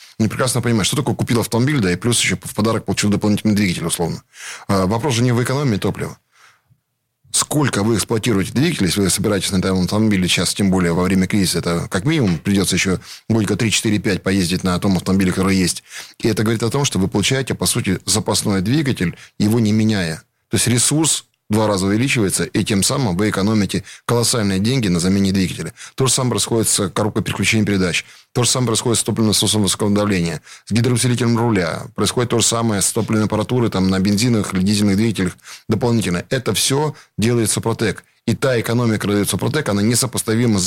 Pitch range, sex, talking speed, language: 95-115 Hz, male, 190 wpm, Russian